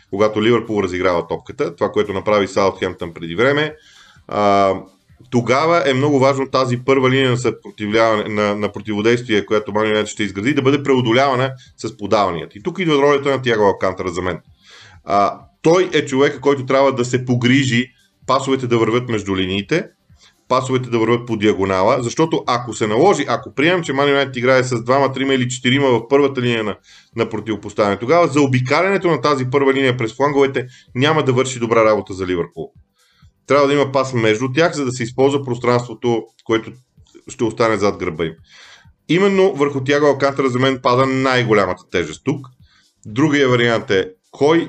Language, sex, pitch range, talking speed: Bulgarian, male, 105-135 Hz, 170 wpm